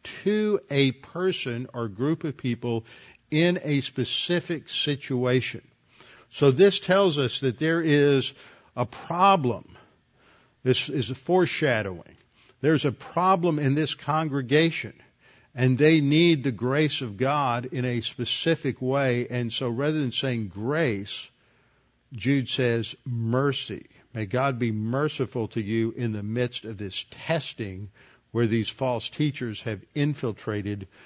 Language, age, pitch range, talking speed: English, 50-69, 120-150 Hz, 130 wpm